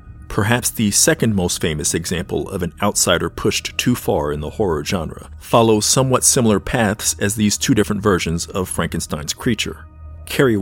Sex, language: male, English